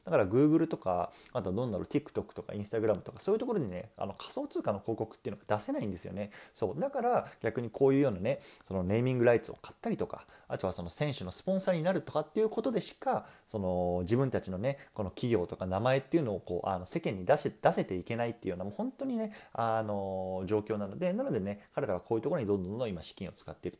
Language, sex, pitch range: Japanese, male, 100-160 Hz